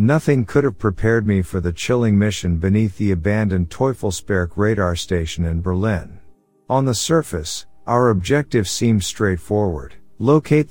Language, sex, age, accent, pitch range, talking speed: English, male, 50-69, American, 90-115 Hz, 140 wpm